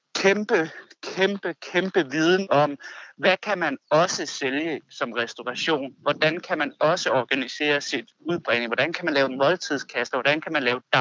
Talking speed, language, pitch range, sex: 160 wpm, Danish, 140-170 Hz, male